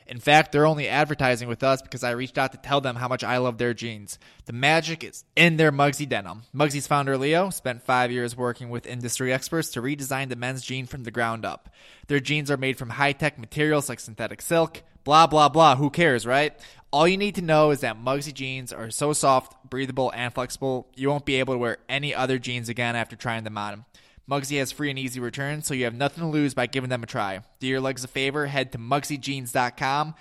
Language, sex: English, male